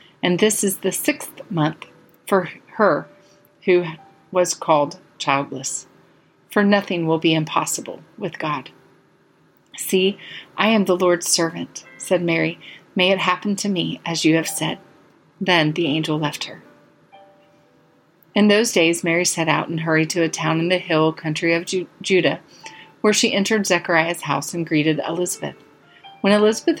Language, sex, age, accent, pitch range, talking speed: English, female, 40-59, American, 170-205 Hz, 150 wpm